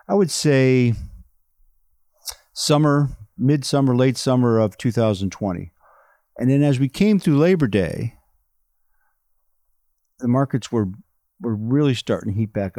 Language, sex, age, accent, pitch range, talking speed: English, male, 50-69, American, 110-135 Hz, 120 wpm